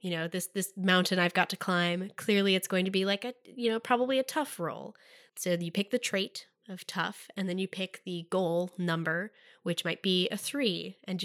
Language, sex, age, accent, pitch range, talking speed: English, female, 10-29, American, 175-215 Hz, 225 wpm